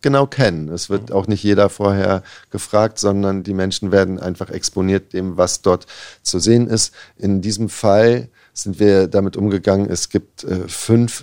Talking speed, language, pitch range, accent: 170 wpm, German, 90-105 Hz, German